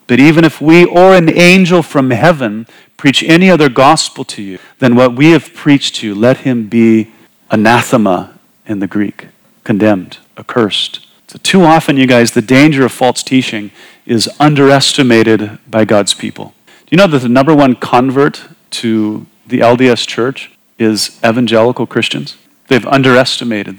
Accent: American